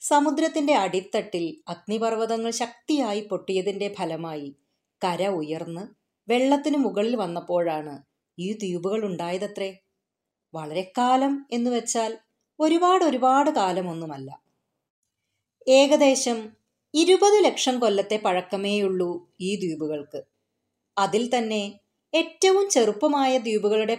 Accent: native